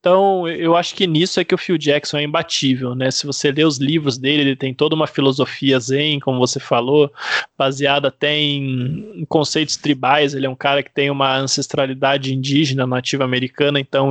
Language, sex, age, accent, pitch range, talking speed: Portuguese, male, 20-39, Brazilian, 135-160 Hz, 190 wpm